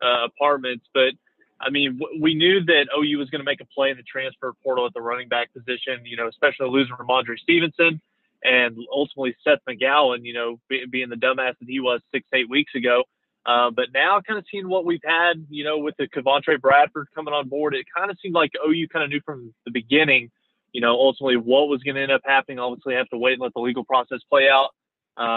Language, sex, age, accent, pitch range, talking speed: English, male, 20-39, American, 125-145 Hz, 230 wpm